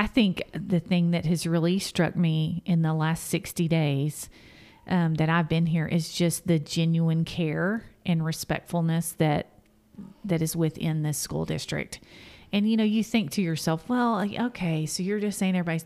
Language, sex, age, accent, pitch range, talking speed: English, female, 40-59, American, 160-180 Hz, 180 wpm